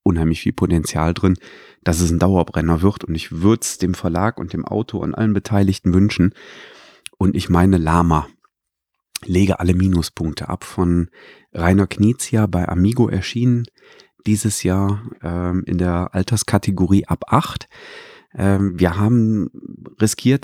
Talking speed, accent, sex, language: 140 wpm, German, male, German